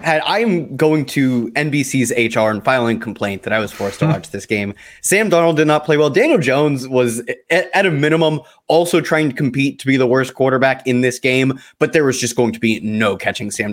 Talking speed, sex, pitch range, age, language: 225 wpm, male, 115-150 Hz, 20-39, English